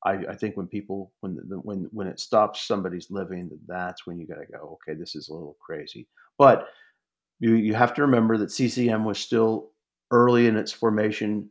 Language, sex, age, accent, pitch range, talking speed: English, male, 40-59, American, 95-115 Hz, 200 wpm